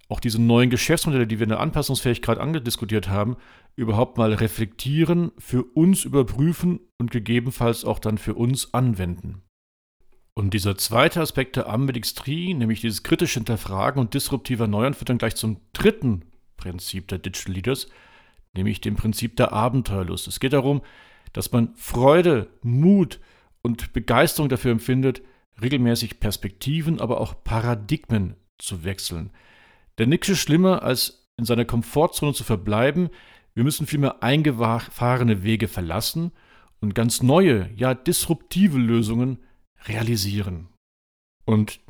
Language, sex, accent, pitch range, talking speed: German, male, German, 110-135 Hz, 130 wpm